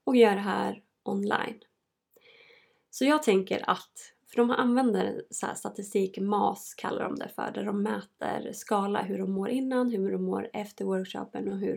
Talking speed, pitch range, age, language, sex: 180 wpm, 200-260 Hz, 20-39, Swedish, female